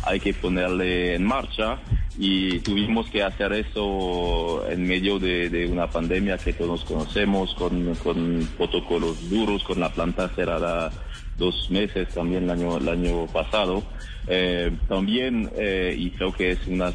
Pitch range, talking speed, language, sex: 85-100 Hz, 150 wpm, Spanish, male